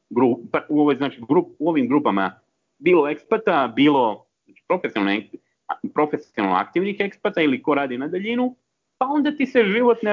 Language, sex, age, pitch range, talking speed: Croatian, male, 40-59, 145-225 Hz, 140 wpm